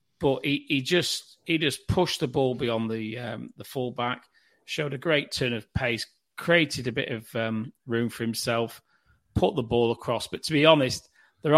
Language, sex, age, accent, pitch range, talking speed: English, male, 40-59, British, 120-140 Hz, 190 wpm